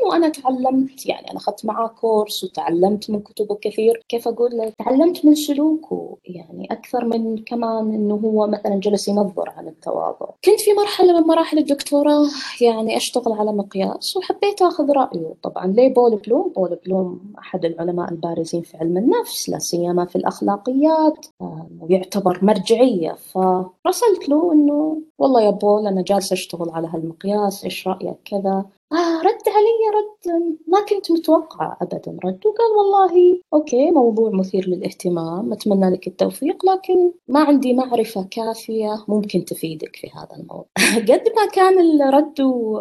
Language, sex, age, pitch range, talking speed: Arabic, female, 20-39, 190-300 Hz, 145 wpm